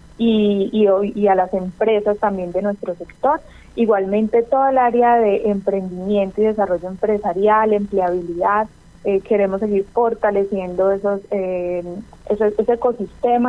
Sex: female